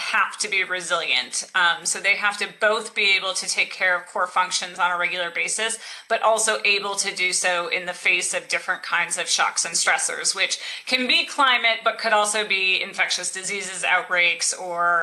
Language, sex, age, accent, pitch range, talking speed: English, female, 30-49, American, 185-215 Hz, 200 wpm